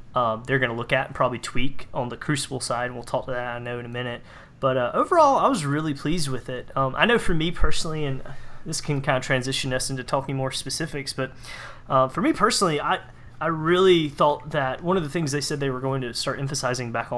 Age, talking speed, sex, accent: 30-49, 250 wpm, male, American